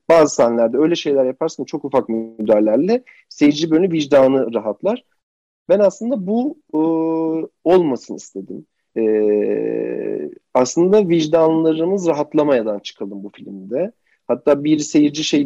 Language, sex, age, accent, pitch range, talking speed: Turkish, male, 40-59, native, 115-180 Hz, 115 wpm